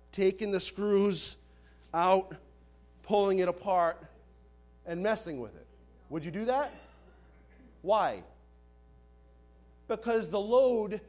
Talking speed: 105 wpm